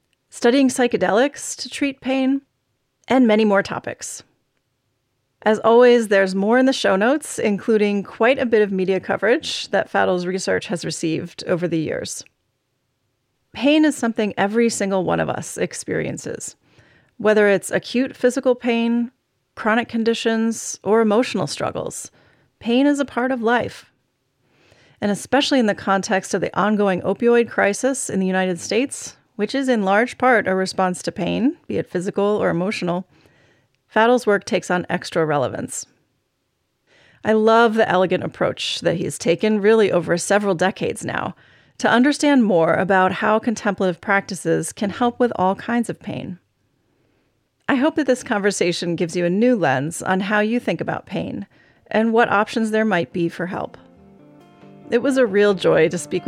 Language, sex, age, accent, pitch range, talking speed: English, female, 30-49, American, 185-235 Hz, 160 wpm